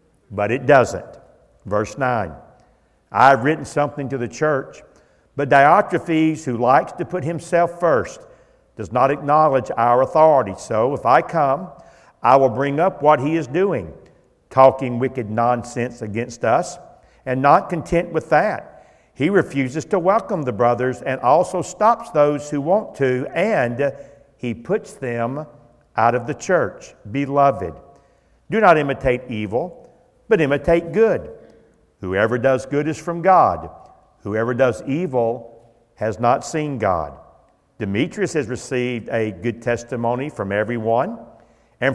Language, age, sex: English, 50-69, male